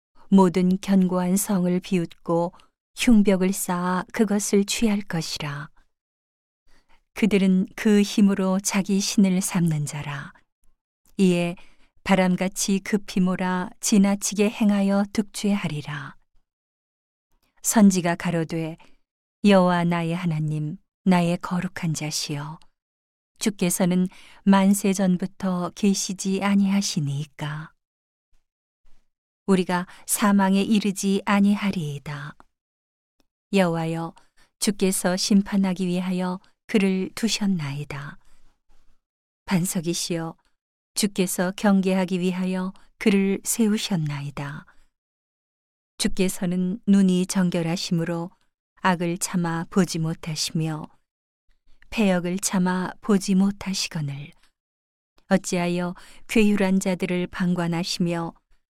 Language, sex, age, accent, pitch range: Korean, female, 40-59, native, 170-195 Hz